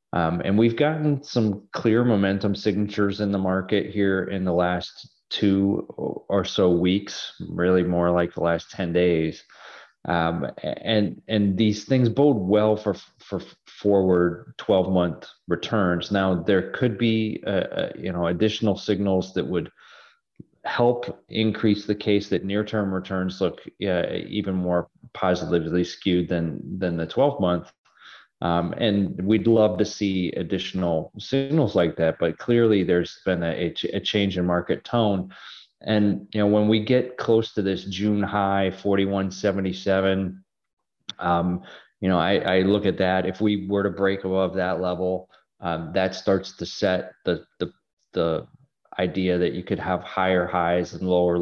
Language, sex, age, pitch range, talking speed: English, male, 30-49, 90-105 Hz, 150 wpm